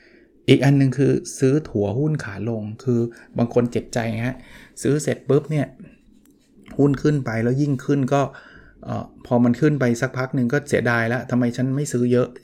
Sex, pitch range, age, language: male, 115-140 Hz, 20-39, Thai